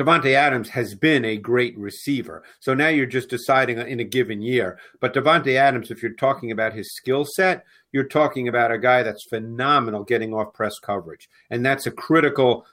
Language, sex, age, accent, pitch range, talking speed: English, male, 50-69, American, 115-135 Hz, 195 wpm